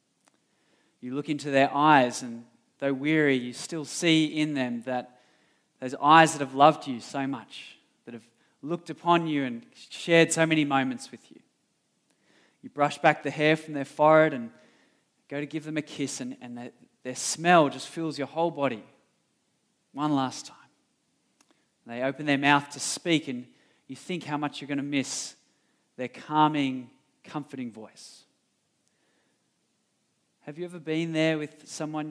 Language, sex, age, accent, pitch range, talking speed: English, male, 20-39, Australian, 140-175 Hz, 165 wpm